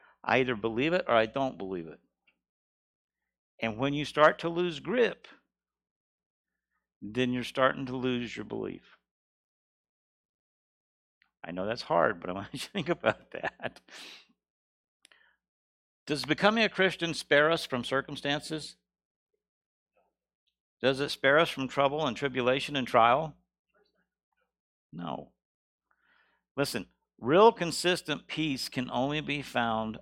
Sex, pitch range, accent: male, 105-145 Hz, American